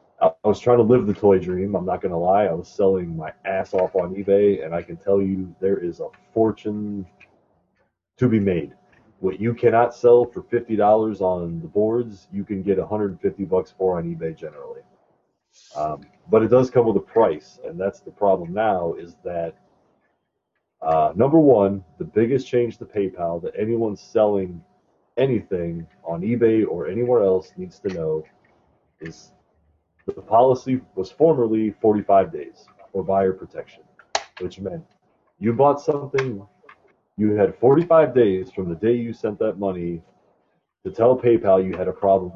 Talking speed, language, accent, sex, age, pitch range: 170 wpm, English, American, male, 30-49, 95-120 Hz